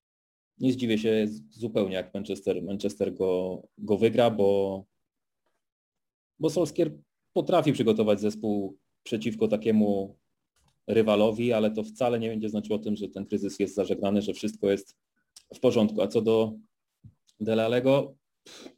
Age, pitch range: 30-49, 100-110 Hz